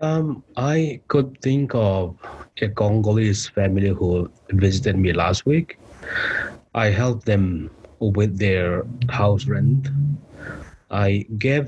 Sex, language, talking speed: male, English, 115 wpm